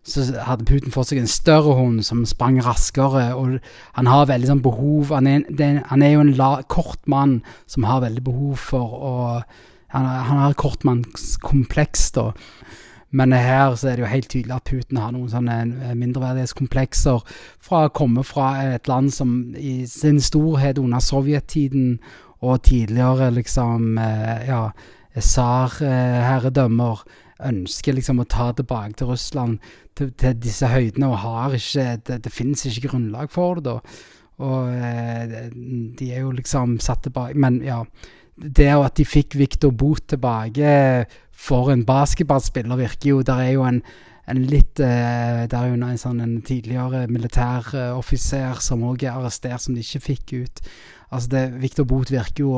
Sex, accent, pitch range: male, Norwegian, 120-140 Hz